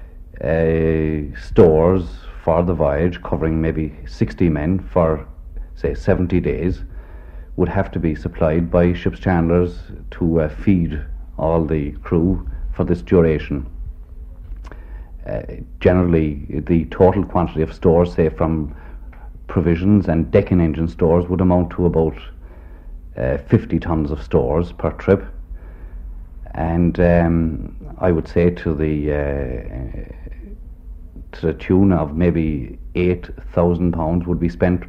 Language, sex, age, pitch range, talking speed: English, male, 60-79, 75-90 Hz, 120 wpm